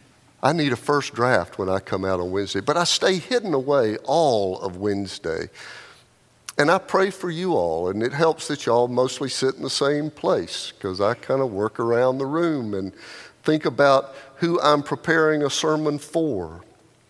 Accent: American